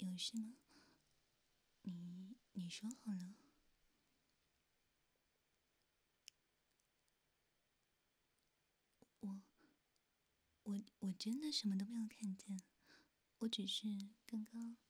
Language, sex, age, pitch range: Chinese, female, 20-39, 195-240 Hz